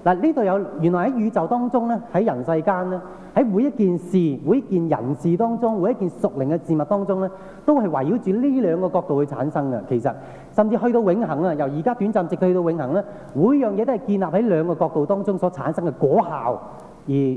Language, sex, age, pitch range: Chinese, male, 30-49, 150-215 Hz